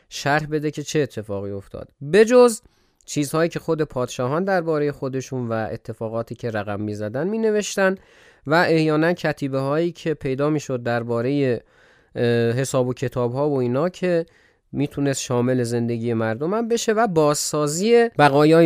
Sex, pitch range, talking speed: male, 120-170 Hz, 150 wpm